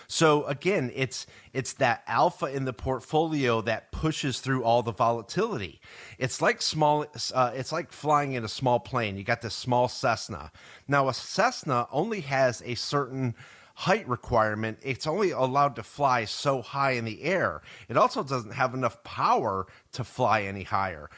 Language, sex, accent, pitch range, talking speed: English, male, American, 115-145 Hz, 170 wpm